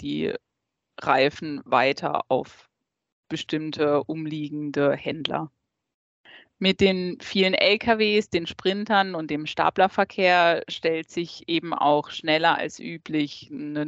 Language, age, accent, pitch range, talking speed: German, 20-39, German, 150-190 Hz, 105 wpm